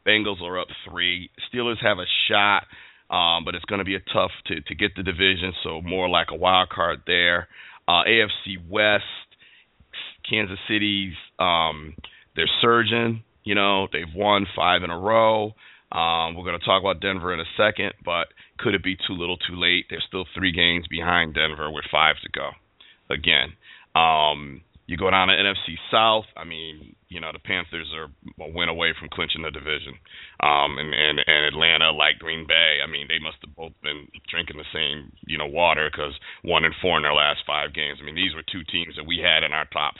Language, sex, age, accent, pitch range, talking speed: English, male, 40-59, American, 80-100 Hz, 205 wpm